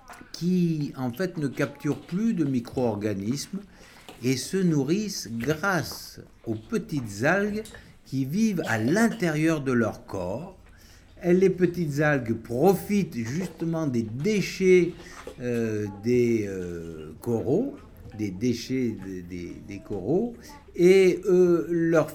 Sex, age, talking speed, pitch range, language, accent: male, 60-79, 115 wpm, 110-175 Hz, French, French